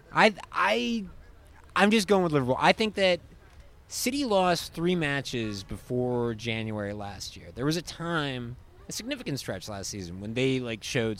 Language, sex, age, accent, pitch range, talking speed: English, male, 30-49, American, 100-155 Hz, 165 wpm